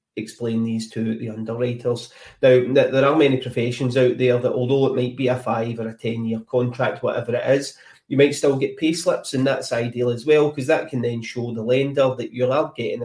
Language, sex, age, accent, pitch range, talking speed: English, male, 30-49, British, 115-135 Hz, 225 wpm